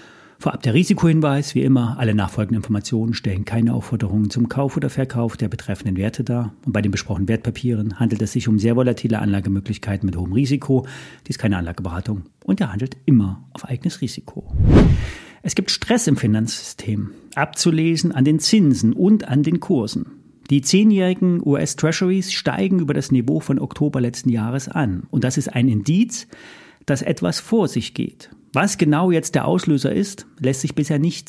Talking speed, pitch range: 175 wpm, 120-165 Hz